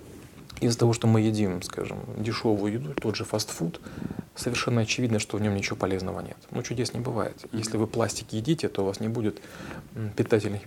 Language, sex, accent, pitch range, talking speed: Russian, male, native, 105-120 Hz, 185 wpm